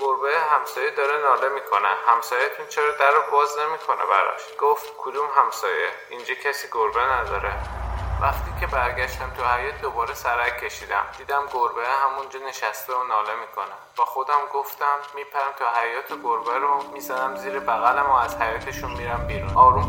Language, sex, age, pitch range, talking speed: Persian, male, 10-29, 105-140 Hz, 160 wpm